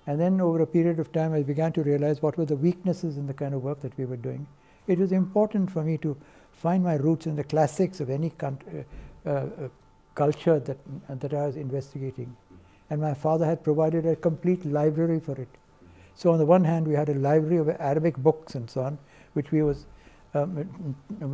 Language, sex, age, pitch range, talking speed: Hindi, male, 60-79, 145-170 Hz, 215 wpm